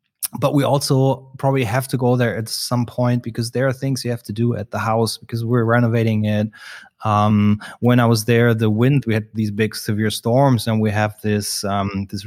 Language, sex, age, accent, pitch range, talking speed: English, male, 20-39, German, 110-130 Hz, 220 wpm